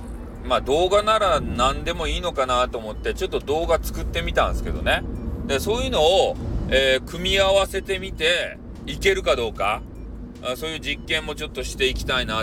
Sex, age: male, 40-59